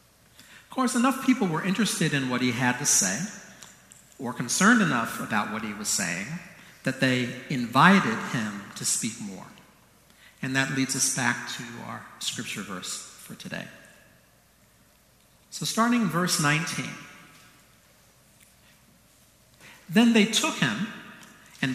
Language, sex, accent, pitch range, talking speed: English, male, American, 135-210 Hz, 130 wpm